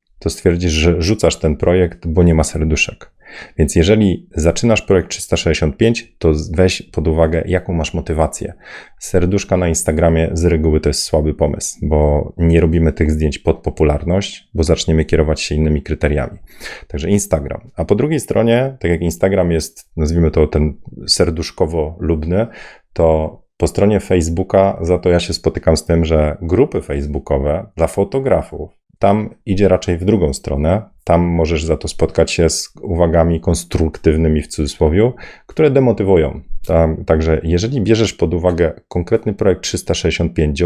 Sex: male